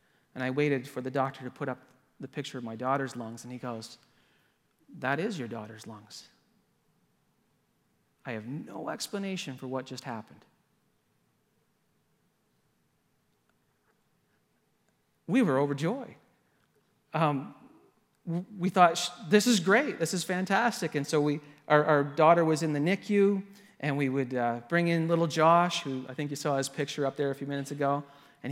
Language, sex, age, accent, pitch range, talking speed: English, male, 40-59, American, 130-155 Hz, 160 wpm